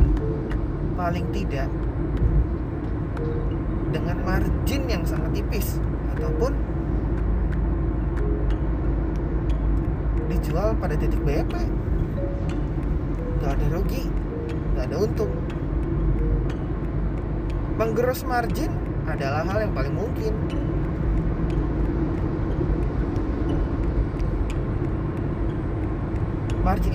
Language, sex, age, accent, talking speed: Indonesian, male, 30-49, native, 60 wpm